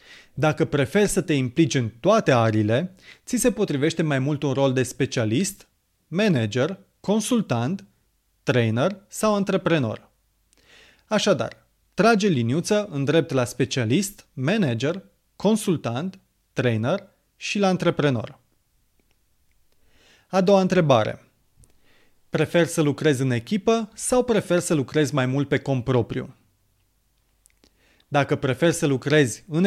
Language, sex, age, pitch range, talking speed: Romanian, male, 30-49, 130-185 Hz, 115 wpm